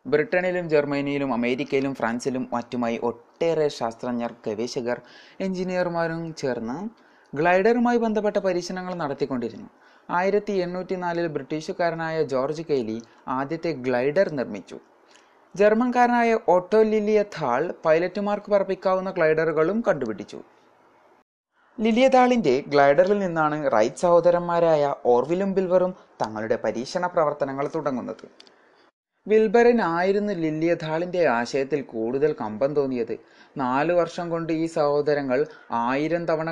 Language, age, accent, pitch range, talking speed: Malayalam, 20-39, native, 135-185 Hz, 90 wpm